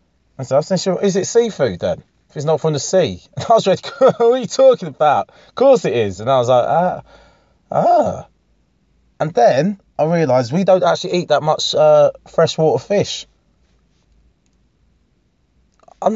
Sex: male